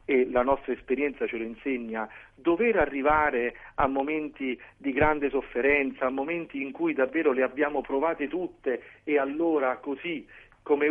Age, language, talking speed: 40-59, Italian, 150 wpm